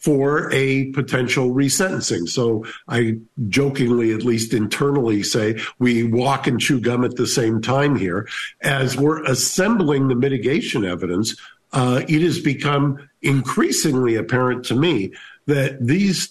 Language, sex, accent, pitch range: English, male, American, 115-145 Hz